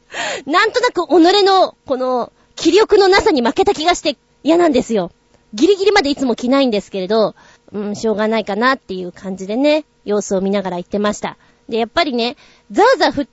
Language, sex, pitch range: Japanese, female, 230-345 Hz